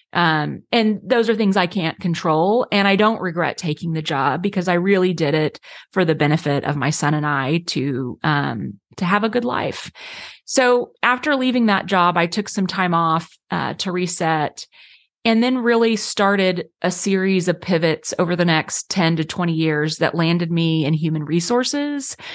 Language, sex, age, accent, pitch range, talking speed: English, female, 30-49, American, 160-210 Hz, 185 wpm